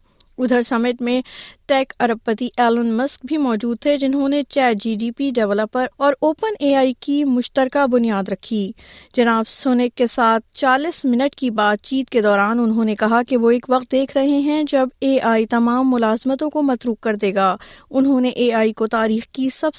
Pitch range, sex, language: 205-270 Hz, female, Urdu